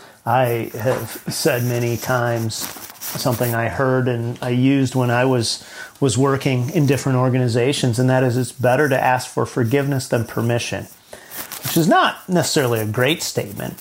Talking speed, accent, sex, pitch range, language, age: 160 wpm, American, male, 110-135 Hz, English, 40-59